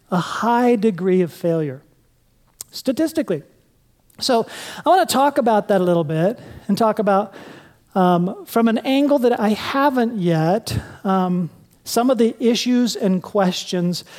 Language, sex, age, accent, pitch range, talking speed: English, male, 40-59, American, 190-235 Hz, 140 wpm